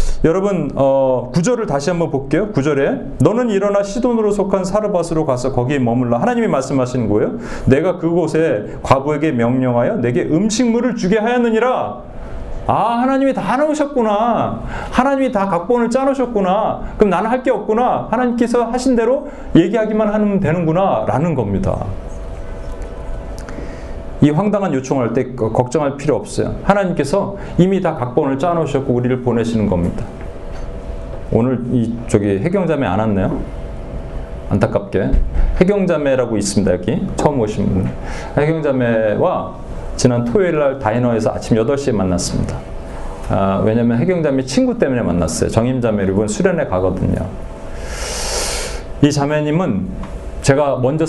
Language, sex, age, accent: Korean, male, 40-59, native